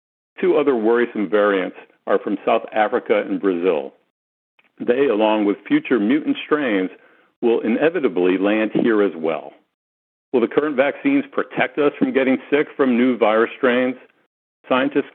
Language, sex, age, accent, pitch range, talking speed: English, male, 50-69, American, 95-145 Hz, 145 wpm